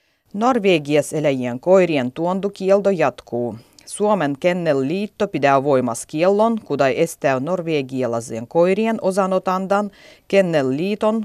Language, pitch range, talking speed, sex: Finnish, 140-190 Hz, 90 wpm, female